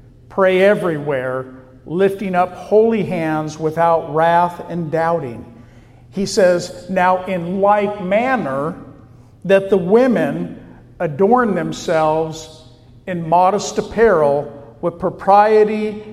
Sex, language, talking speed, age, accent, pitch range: male, English, 95 wpm, 50-69, American, 125-190 Hz